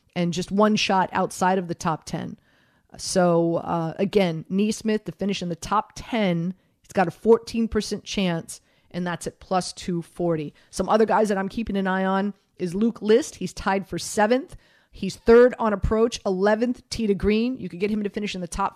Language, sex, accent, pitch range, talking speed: English, female, American, 180-220 Hz, 200 wpm